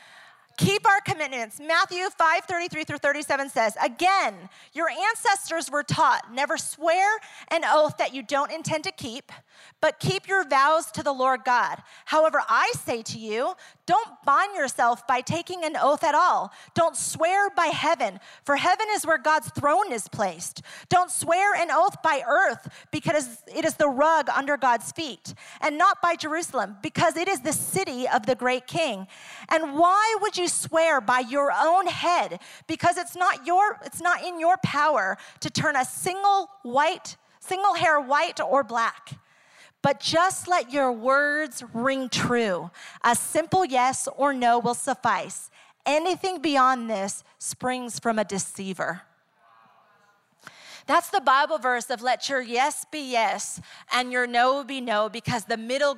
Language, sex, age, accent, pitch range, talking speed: English, female, 30-49, American, 250-350 Hz, 160 wpm